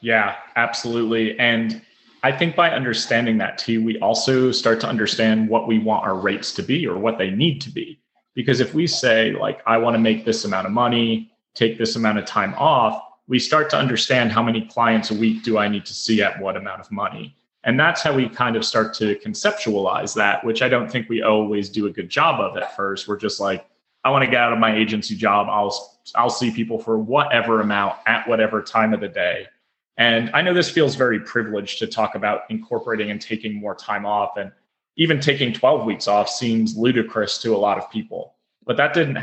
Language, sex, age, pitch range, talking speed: English, male, 30-49, 110-120 Hz, 220 wpm